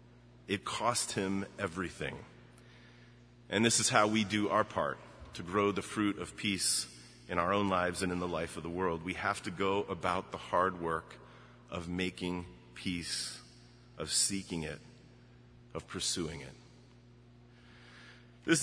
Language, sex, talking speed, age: English, male, 150 wpm, 30-49